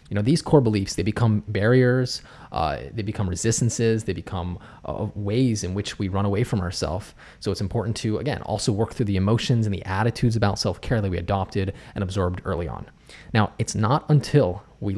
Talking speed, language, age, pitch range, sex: 200 wpm, English, 20-39, 95-120 Hz, male